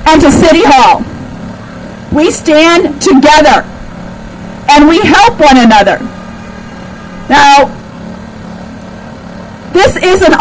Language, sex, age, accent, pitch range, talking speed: English, female, 50-69, American, 270-330 Hz, 85 wpm